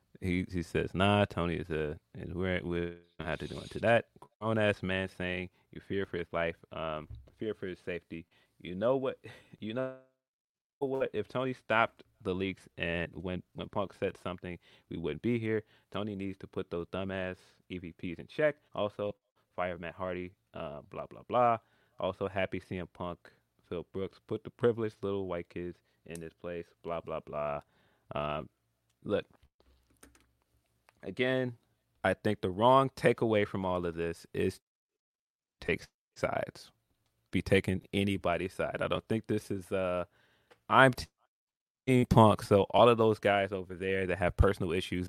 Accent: American